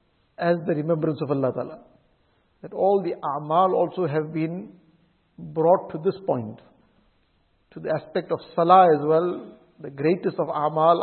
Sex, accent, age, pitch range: male, Indian, 50-69, 145-170 Hz